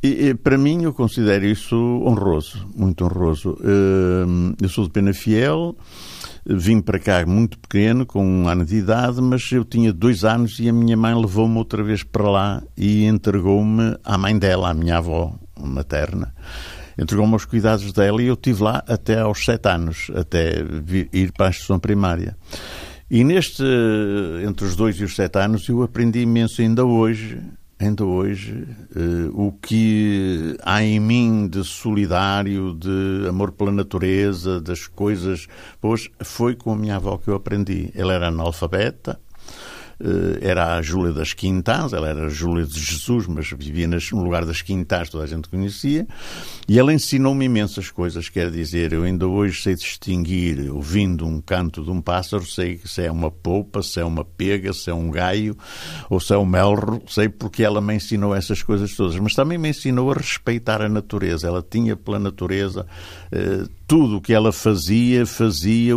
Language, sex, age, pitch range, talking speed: Portuguese, male, 60-79, 90-110 Hz, 175 wpm